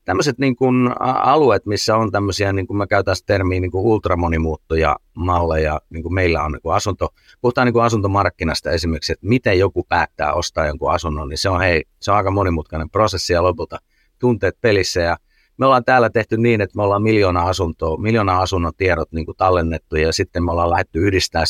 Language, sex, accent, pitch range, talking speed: Finnish, male, native, 85-100 Hz, 175 wpm